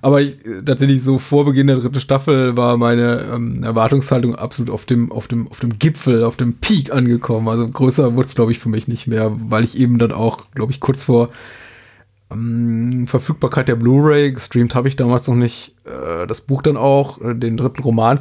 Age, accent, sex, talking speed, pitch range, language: 30-49, German, male, 195 wpm, 115-135 Hz, German